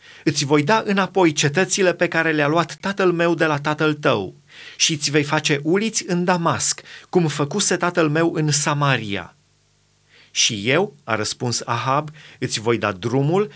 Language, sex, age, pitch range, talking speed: Romanian, male, 30-49, 130-170 Hz, 165 wpm